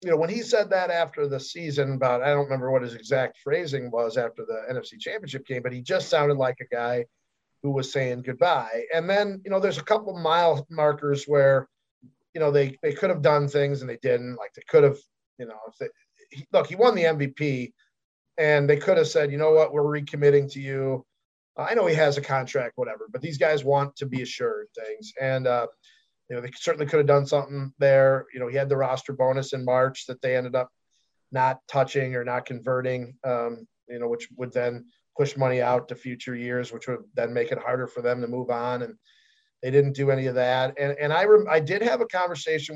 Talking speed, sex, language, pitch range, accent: 225 wpm, male, English, 125-155 Hz, American